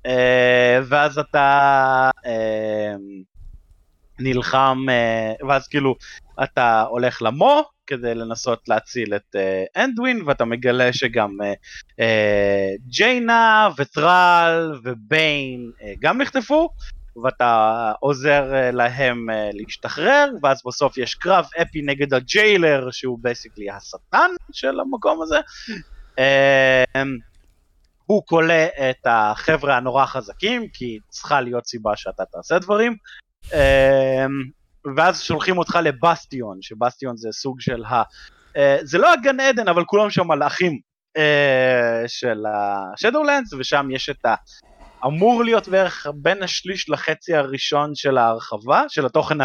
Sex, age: male, 30-49